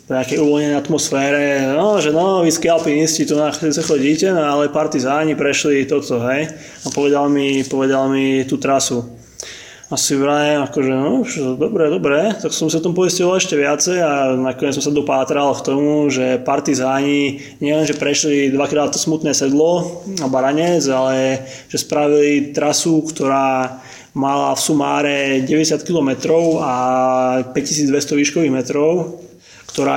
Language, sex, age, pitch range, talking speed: Slovak, male, 20-39, 135-150 Hz, 145 wpm